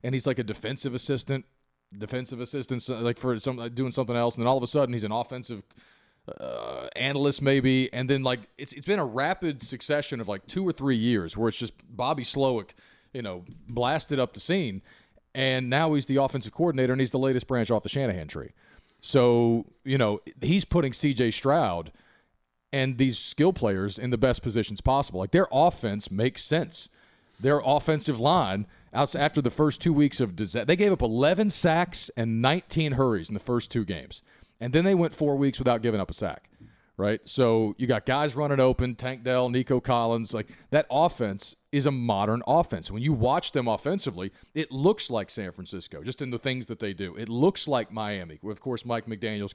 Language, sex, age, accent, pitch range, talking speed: English, male, 40-59, American, 115-140 Hz, 200 wpm